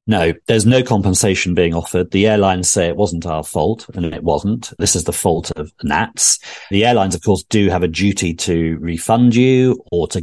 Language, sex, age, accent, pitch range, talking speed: English, male, 40-59, British, 80-110 Hz, 205 wpm